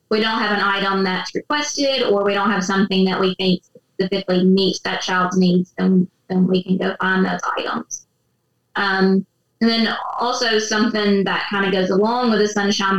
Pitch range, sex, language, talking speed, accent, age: 185-200 Hz, female, English, 190 wpm, American, 20-39